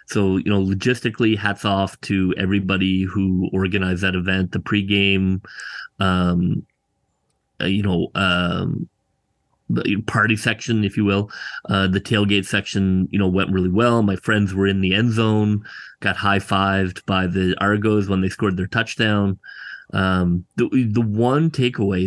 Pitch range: 95-110 Hz